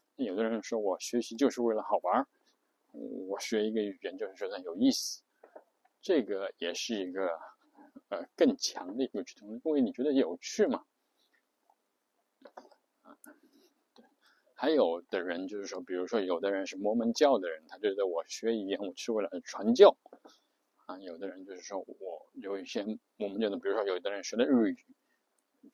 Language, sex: Chinese, male